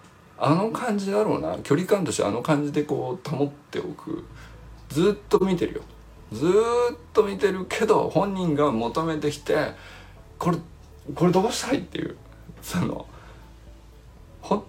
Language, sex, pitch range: Japanese, male, 105-175 Hz